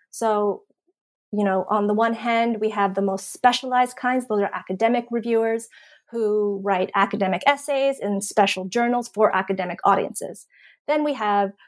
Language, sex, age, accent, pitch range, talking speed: English, female, 30-49, American, 200-240 Hz, 155 wpm